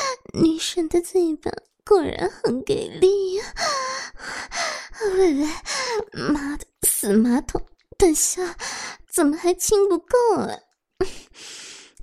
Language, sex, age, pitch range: Chinese, male, 20-39, 265-355 Hz